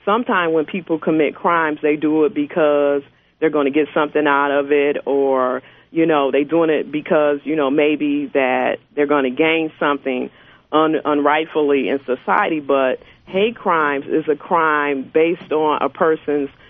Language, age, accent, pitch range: English, 40-59, American, 145-165 Hz